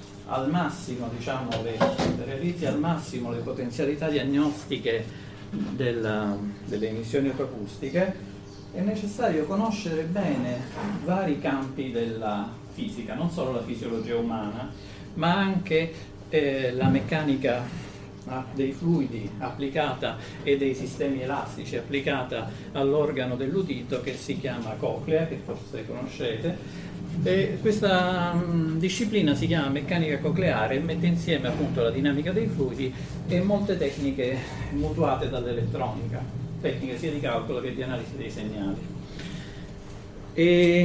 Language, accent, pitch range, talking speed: Italian, native, 120-165 Hz, 115 wpm